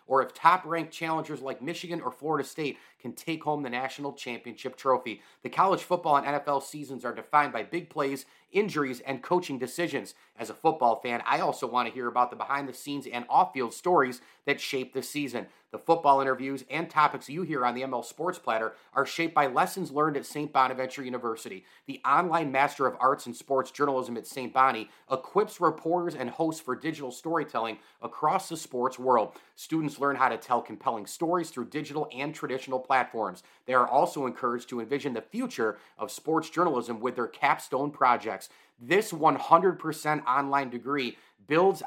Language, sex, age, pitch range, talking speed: English, male, 30-49, 130-155 Hz, 180 wpm